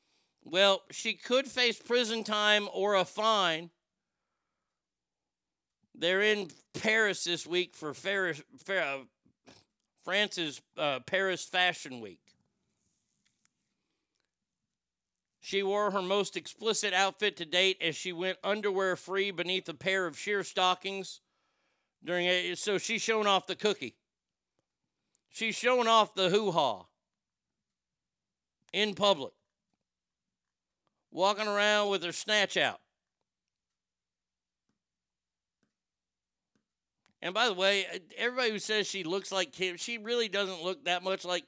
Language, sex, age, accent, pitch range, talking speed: English, male, 50-69, American, 170-205 Hz, 115 wpm